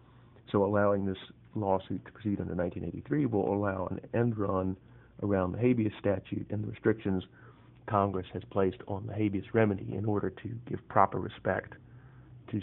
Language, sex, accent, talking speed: English, male, American, 160 wpm